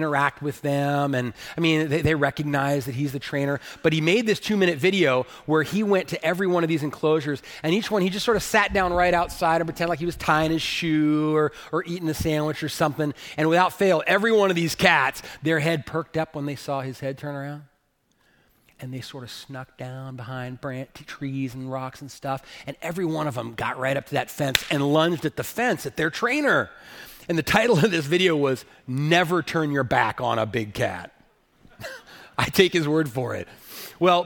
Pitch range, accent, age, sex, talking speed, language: 140-175 Hz, American, 30-49, male, 225 wpm, English